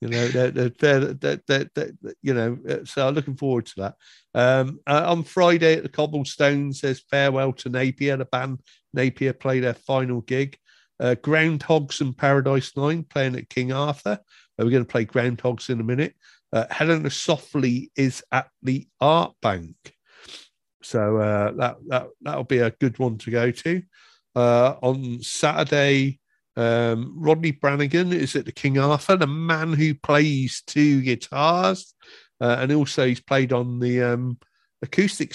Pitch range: 120-150 Hz